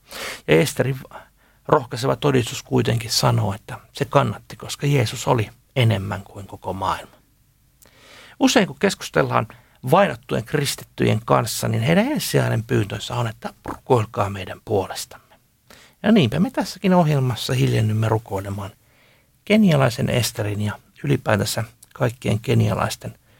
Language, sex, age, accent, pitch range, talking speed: Finnish, male, 60-79, native, 115-140 Hz, 115 wpm